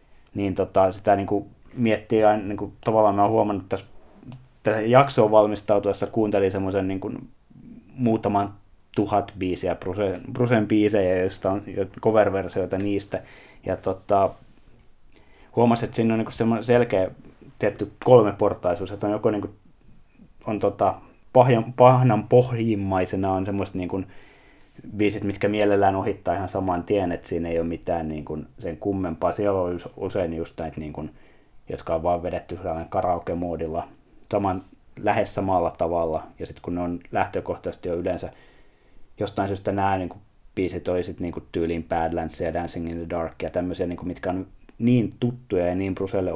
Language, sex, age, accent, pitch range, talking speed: Finnish, male, 20-39, native, 90-105 Hz, 155 wpm